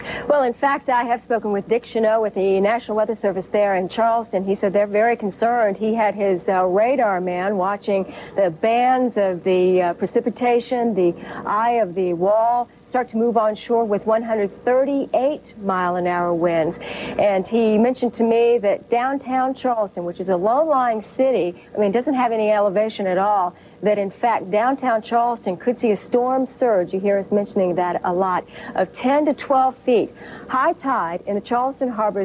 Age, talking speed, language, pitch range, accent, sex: 50-69, 185 wpm, English, 200-250 Hz, American, female